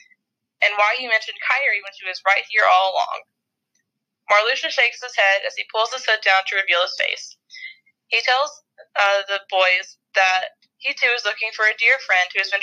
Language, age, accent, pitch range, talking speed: English, 20-39, American, 195-255 Hz, 205 wpm